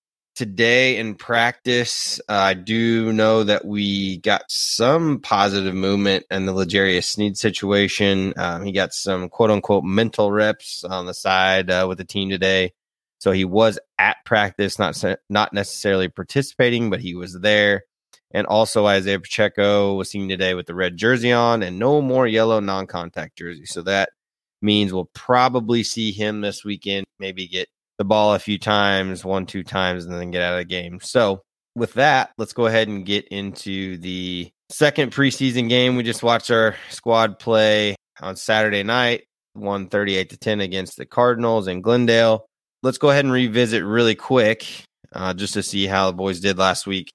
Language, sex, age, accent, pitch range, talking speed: English, male, 20-39, American, 95-115 Hz, 175 wpm